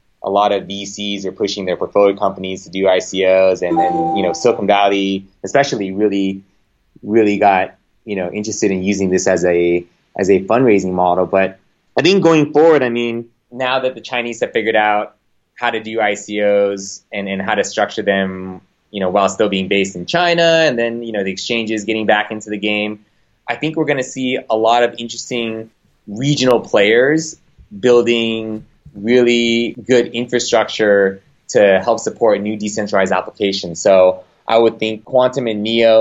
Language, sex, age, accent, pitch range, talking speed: English, male, 20-39, American, 95-110 Hz, 175 wpm